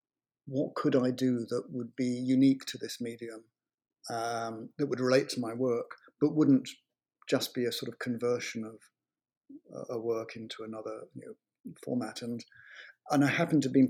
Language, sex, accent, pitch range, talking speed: English, male, British, 115-135 Hz, 175 wpm